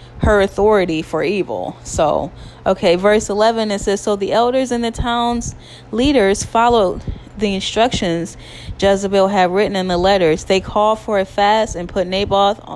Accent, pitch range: American, 180-220 Hz